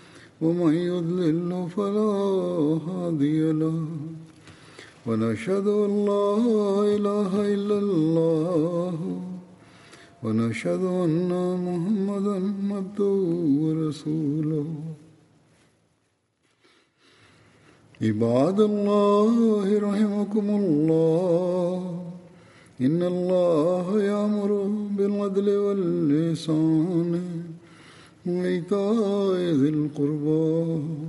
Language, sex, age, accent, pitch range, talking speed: Indonesian, male, 50-69, Indian, 155-200 Hz, 50 wpm